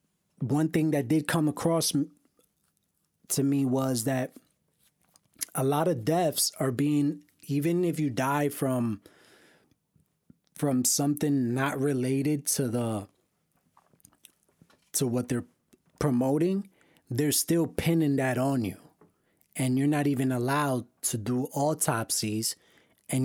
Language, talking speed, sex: English, 120 wpm, male